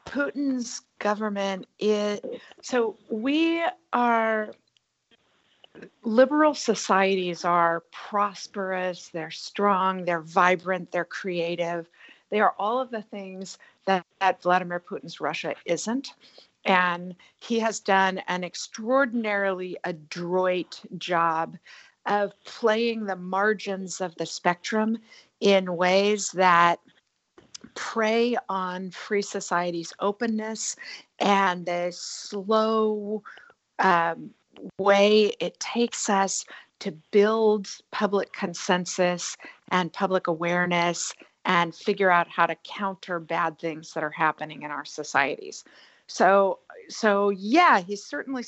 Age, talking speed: 50-69, 105 wpm